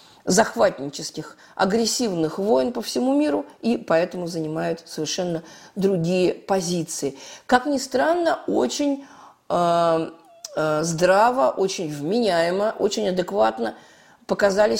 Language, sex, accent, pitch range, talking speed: Russian, female, native, 175-225 Hz, 95 wpm